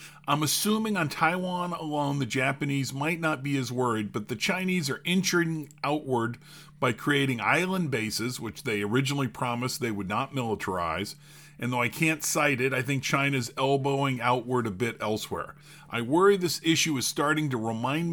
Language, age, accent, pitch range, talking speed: English, 40-59, American, 130-165 Hz, 170 wpm